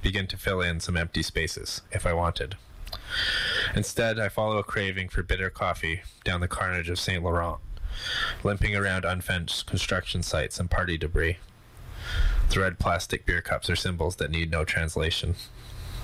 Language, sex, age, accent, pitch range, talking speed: English, male, 20-39, American, 85-100 Hz, 155 wpm